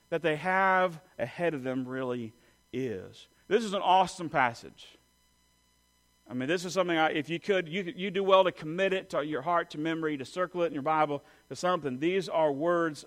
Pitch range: 140-220 Hz